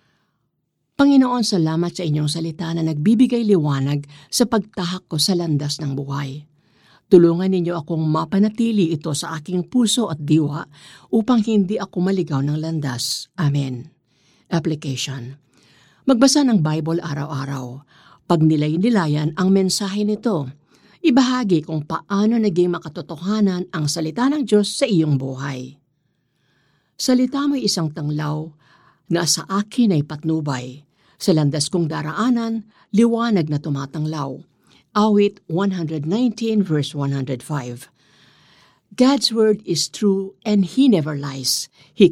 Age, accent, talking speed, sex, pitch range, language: 50-69, native, 120 wpm, female, 145-205 Hz, Filipino